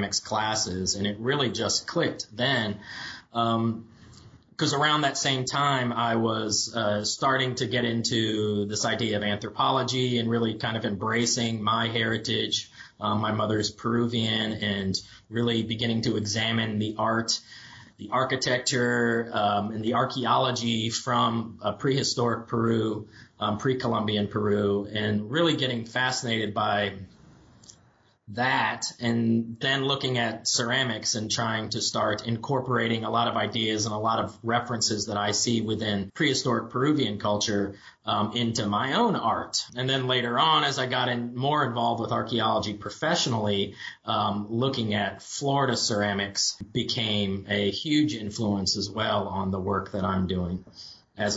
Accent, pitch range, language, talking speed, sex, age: American, 105-120 Hz, English, 145 wpm, male, 30-49